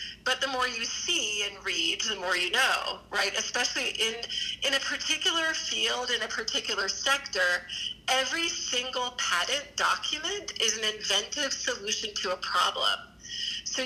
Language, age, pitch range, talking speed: English, 40-59, 195-260 Hz, 145 wpm